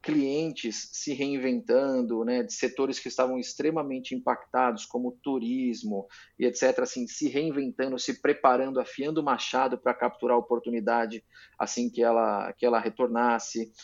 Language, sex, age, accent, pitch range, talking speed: Portuguese, male, 30-49, Brazilian, 125-165 Hz, 140 wpm